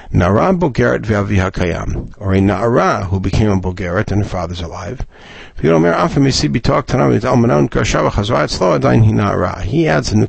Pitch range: 90-115 Hz